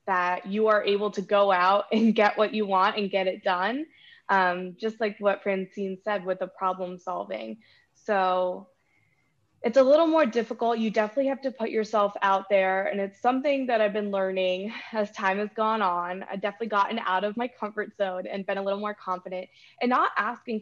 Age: 20-39